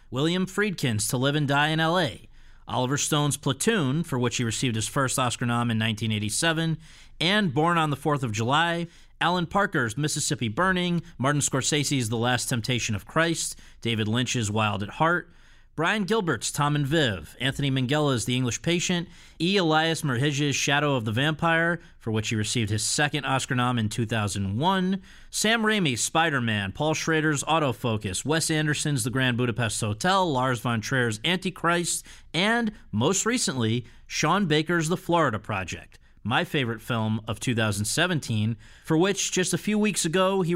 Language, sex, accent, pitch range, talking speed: English, male, American, 120-165 Hz, 160 wpm